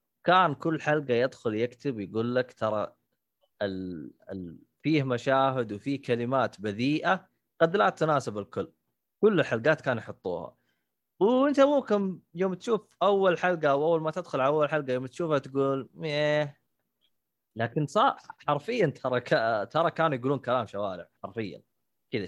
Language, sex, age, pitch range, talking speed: Arabic, male, 20-39, 115-175 Hz, 140 wpm